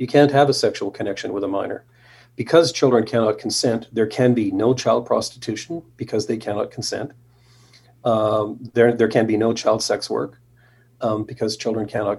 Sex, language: male, English